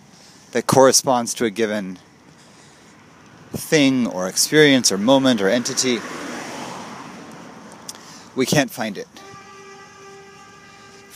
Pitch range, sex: 100-130 Hz, male